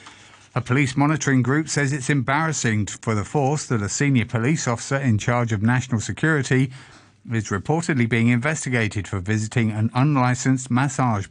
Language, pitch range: English, 110-135 Hz